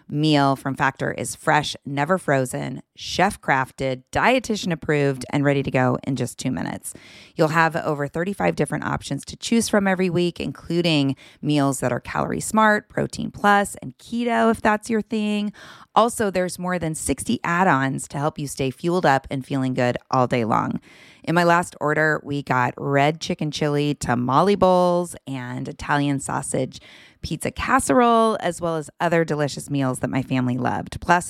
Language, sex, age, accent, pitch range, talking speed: English, female, 30-49, American, 135-175 Hz, 170 wpm